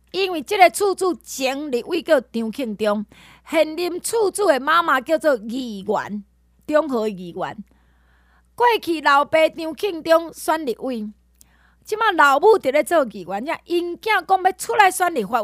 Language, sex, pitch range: Chinese, female, 220-355 Hz